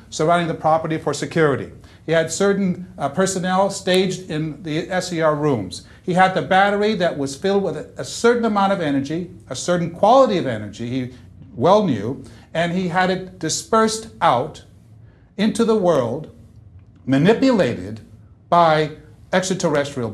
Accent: American